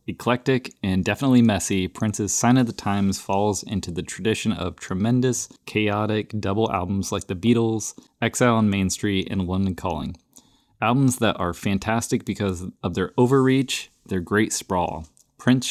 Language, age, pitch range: English, 20-39, 95-115 Hz